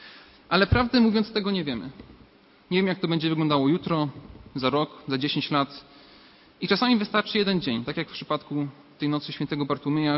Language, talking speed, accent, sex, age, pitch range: Polish, 185 wpm, native, male, 40-59, 145-185 Hz